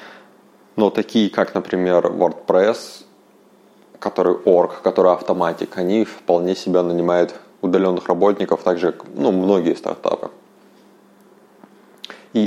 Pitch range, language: 90-110 Hz, Russian